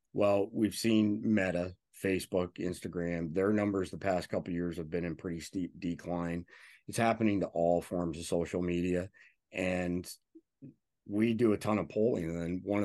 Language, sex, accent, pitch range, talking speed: English, male, American, 85-105 Hz, 170 wpm